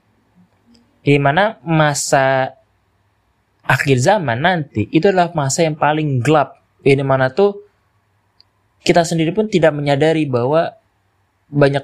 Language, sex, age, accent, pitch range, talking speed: Indonesian, male, 20-39, native, 105-135 Hz, 110 wpm